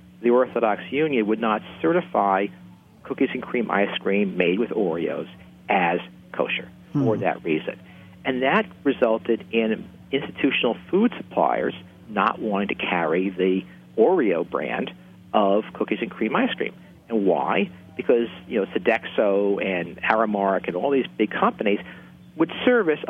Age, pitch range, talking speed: 50-69, 90-125 Hz, 140 wpm